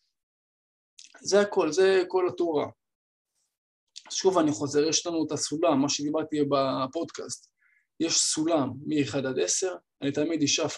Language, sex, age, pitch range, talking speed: Hebrew, male, 20-39, 145-180 Hz, 130 wpm